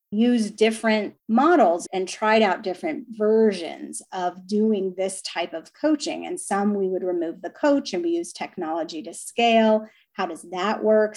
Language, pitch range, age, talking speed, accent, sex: English, 185-235 Hz, 30-49, 165 wpm, American, female